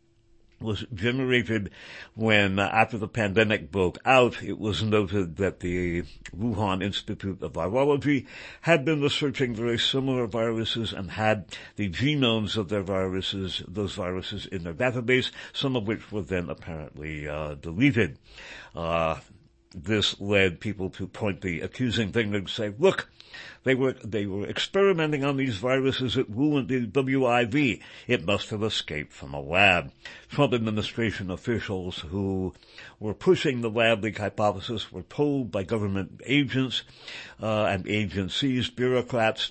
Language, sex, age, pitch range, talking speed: English, male, 60-79, 100-125 Hz, 145 wpm